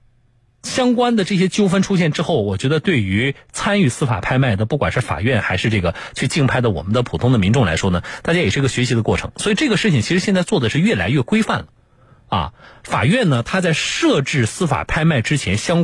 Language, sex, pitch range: Chinese, male, 110-150 Hz